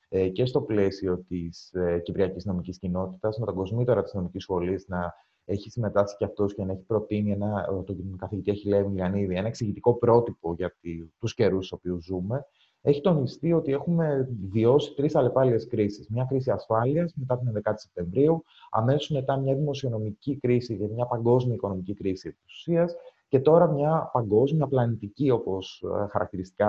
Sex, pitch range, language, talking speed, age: male, 100-145 Hz, Greek, 150 wpm, 30-49